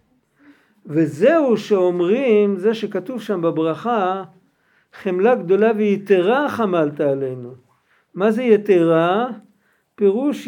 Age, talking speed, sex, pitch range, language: 60-79, 85 wpm, male, 170-220 Hz, Hebrew